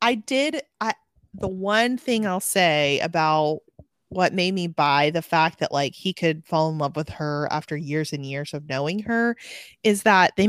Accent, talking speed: American, 190 wpm